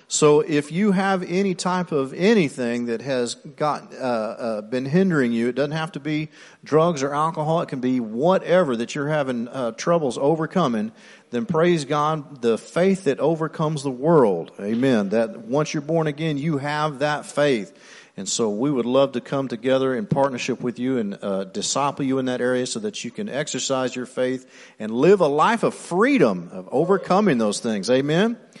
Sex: male